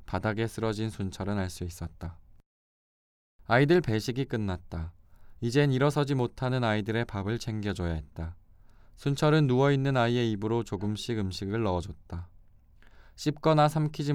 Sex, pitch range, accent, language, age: male, 90-130 Hz, native, Korean, 20-39